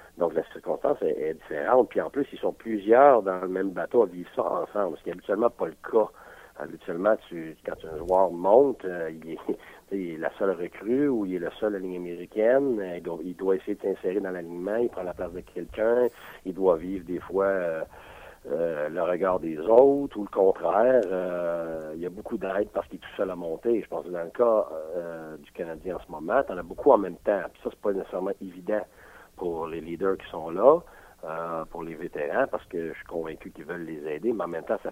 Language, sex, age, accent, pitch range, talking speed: French, male, 60-79, French, 85-105 Hz, 240 wpm